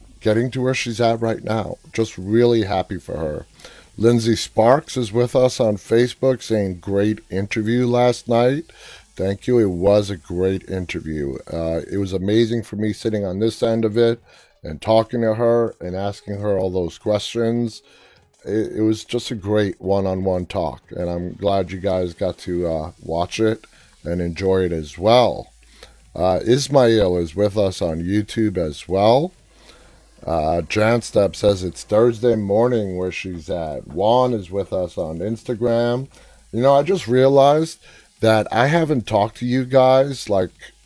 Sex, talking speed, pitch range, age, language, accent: male, 165 wpm, 95-120 Hz, 30-49, English, American